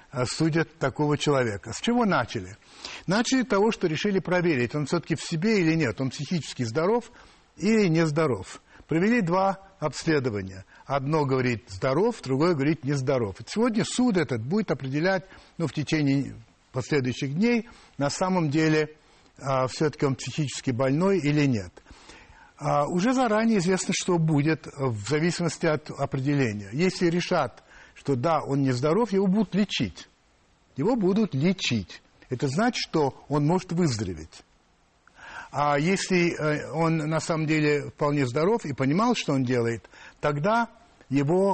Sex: male